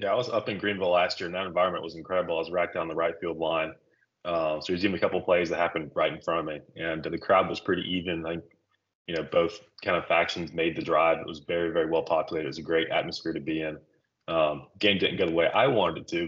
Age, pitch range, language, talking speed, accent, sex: 20-39, 85-105 Hz, English, 290 wpm, American, male